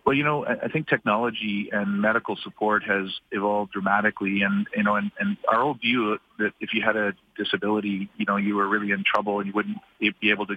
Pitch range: 105-120 Hz